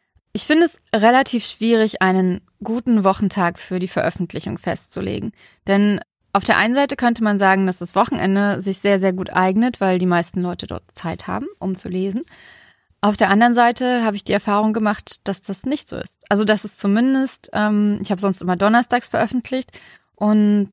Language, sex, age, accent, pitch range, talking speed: German, female, 20-39, German, 190-225 Hz, 185 wpm